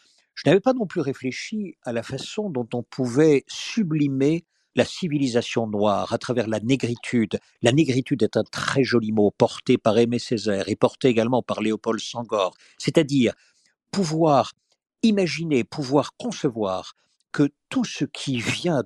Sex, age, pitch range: male, 50-69, 115-150 Hz